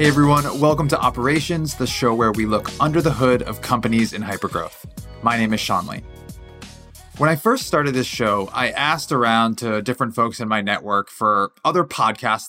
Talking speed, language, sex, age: 190 wpm, English, male, 20-39